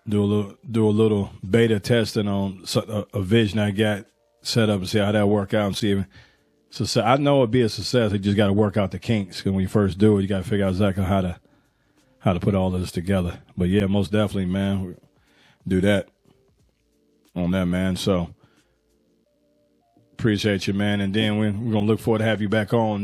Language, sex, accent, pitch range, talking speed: English, male, American, 95-110 Hz, 235 wpm